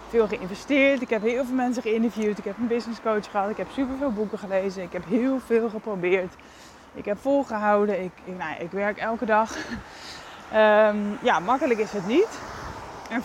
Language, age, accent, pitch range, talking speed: English, 20-39, Dutch, 190-245 Hz, 190 wpm